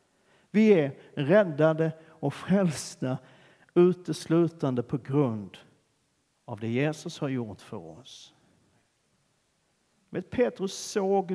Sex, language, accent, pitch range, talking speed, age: male, Swedish, native, 130-185 Hz, 90 wpm, 50-69